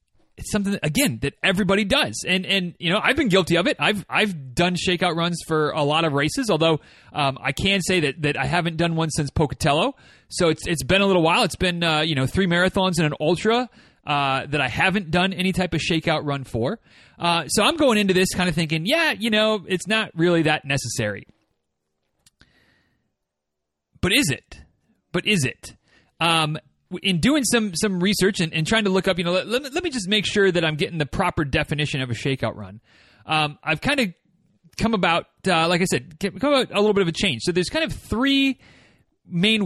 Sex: male